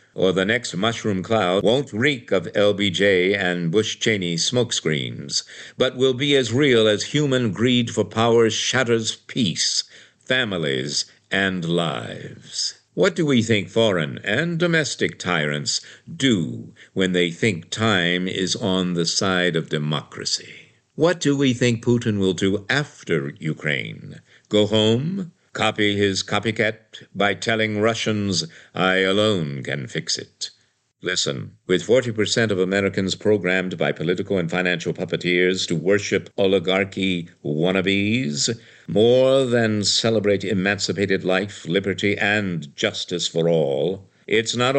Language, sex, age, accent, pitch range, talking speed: English, male, 60-79, American, 90-115 Hz, 125 wpm